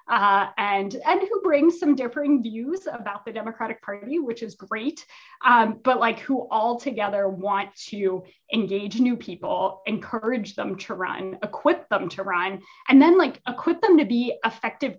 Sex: female